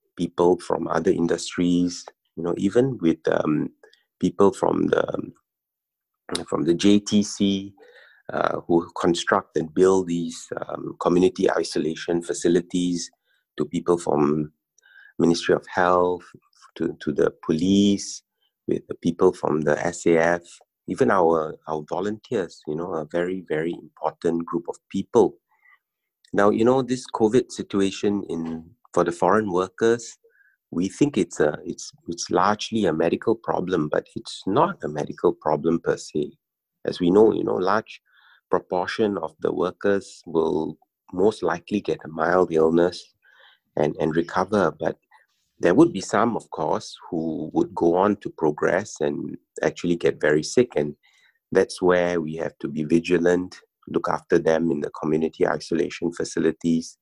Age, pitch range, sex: 30-49, 80-100 Hz, male